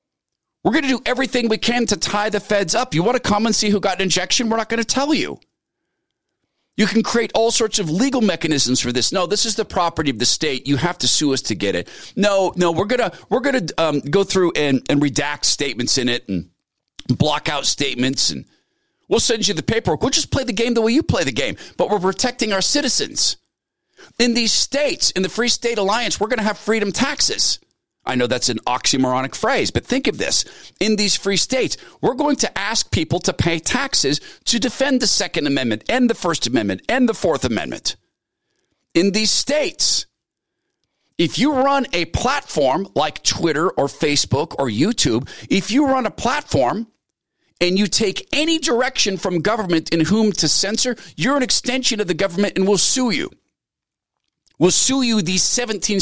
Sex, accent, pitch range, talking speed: male, American, 165-245 Hz, 200 wpm